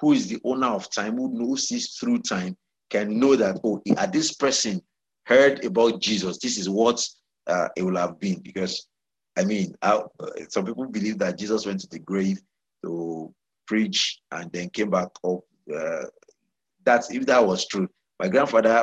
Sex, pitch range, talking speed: male, 100-150 Hz, 185 wpm